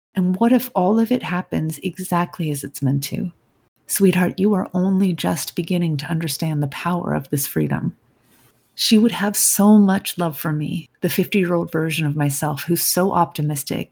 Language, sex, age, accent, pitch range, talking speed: English, female, 40-59, American, 160-195 Hz, 175 wpm